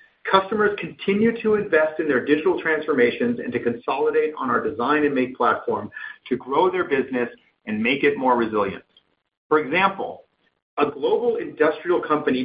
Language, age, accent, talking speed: English, 40-59, American, 155 wpm